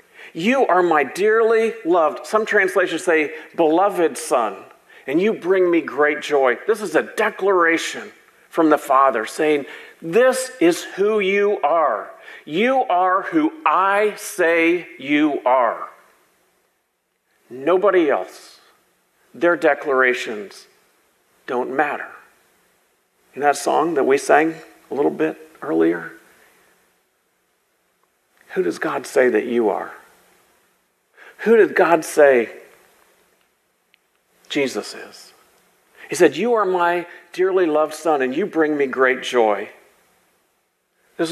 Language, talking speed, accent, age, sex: English, 115 wpm, American, 50-69, male